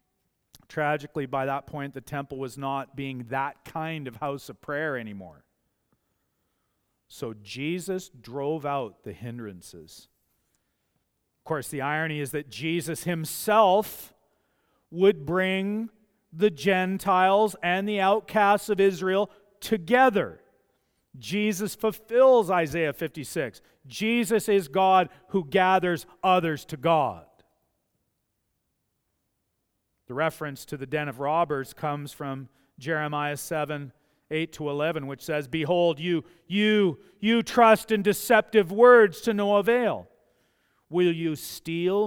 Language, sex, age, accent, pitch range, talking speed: English, male, 40-59, American, 150-210 Hz, 115 wpm